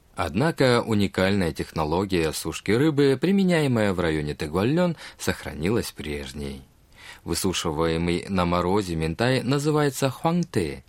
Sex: male